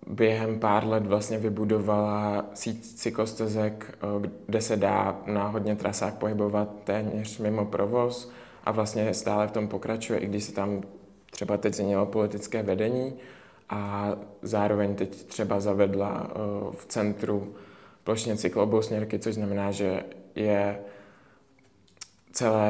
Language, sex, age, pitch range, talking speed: Czech, male, 20-39, 100-110 Hz, 120 wpm